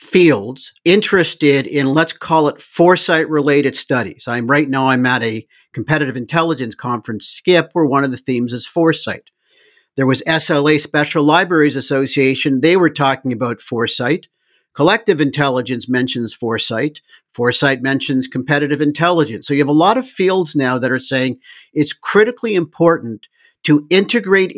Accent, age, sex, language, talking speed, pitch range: American, 50-69, male, English, 150 wpm, 130-160 Hz